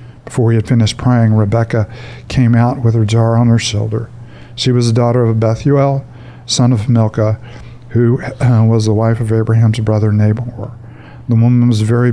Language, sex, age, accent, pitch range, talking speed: English, male, 50-69, American, 110-120 Hz, 180 wpm